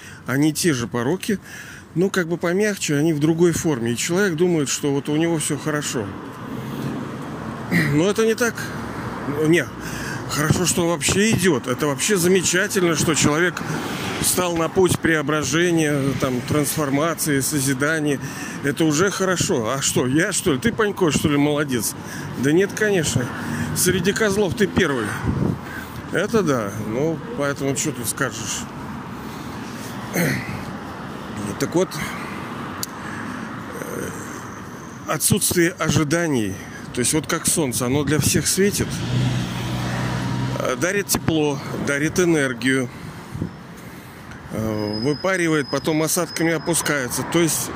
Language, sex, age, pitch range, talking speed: Russian, male, 40-59, 140-180 Hz, 115 wpm